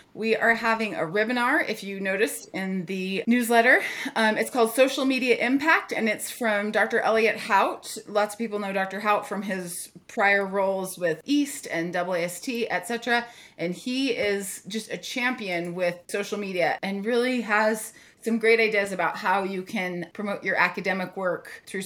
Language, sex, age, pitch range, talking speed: English, female, 30-49, 185-230 Hz, 170 wpm